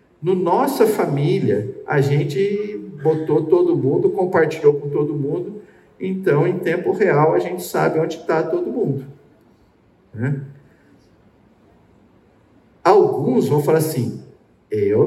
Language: Portuguese